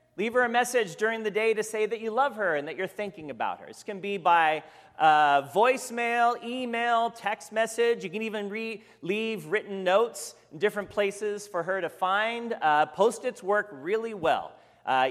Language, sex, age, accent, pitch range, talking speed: English, male, 40-59, American, 155-220 Hz, 185 wpm